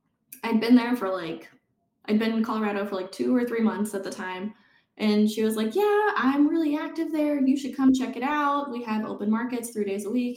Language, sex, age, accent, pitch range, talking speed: English, female, 10-29, American, 200-245 Hz, 235 wpm